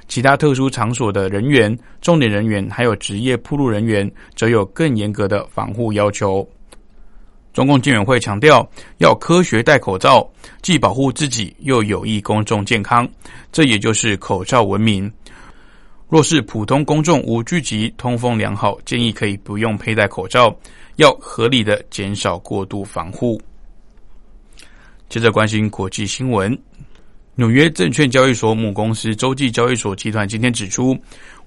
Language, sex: Chinese, male